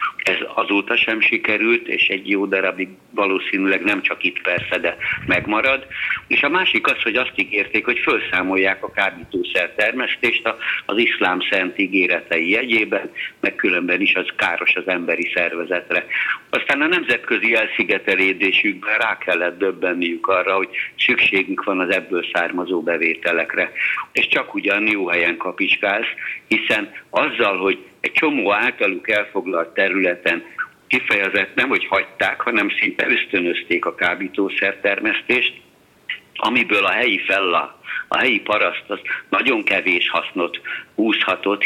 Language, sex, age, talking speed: Hungarian, male, 60-79, 130 wpm